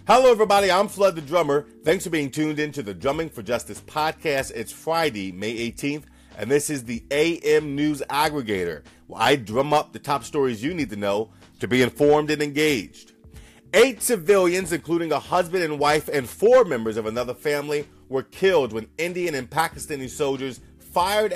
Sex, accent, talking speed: male, American, 180 wpm